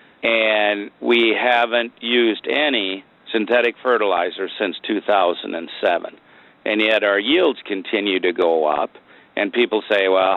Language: English